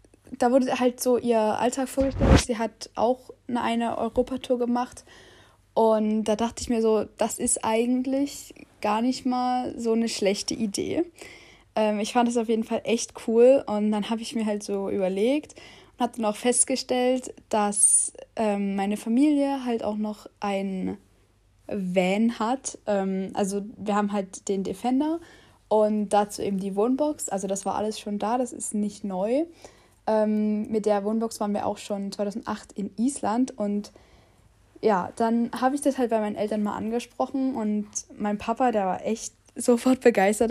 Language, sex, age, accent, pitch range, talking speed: German, female, 10-29, German, 210-250 Hz, 170 wpm